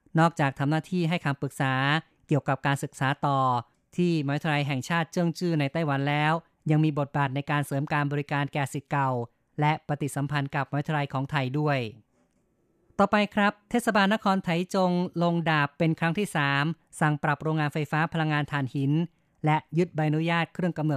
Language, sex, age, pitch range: Thai, female, 20-39, 140-155 Hz